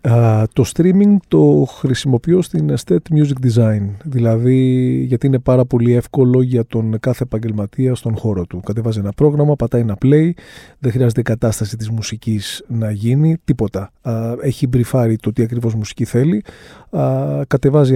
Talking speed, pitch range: 155 wpm, 110-140 Hz